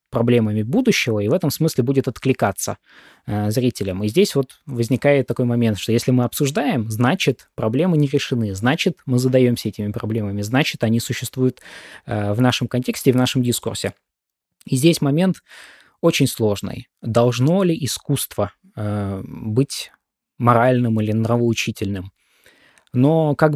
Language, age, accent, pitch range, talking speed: Russian, 20-39, native, 110-135 Hz, 140 wpm